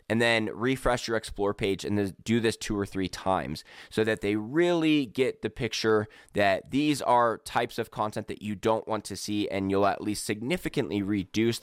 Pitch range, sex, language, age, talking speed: 100-120 Hz, male, English, 20-39, 195 wpm